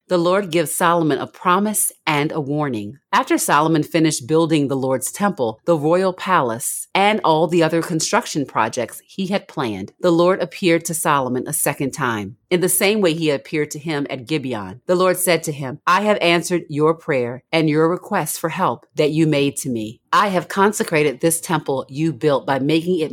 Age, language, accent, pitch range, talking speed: 40-59, English, American, 140-180 Hz, 195 wpm